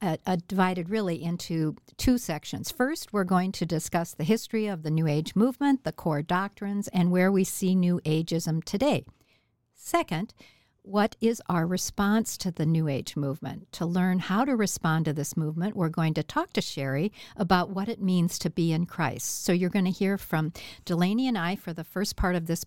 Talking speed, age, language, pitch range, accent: 200 wpm, 60-79, English, 160-205 Hz, American